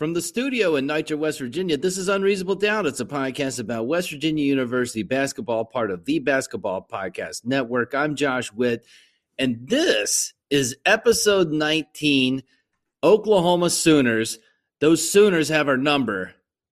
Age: 40-59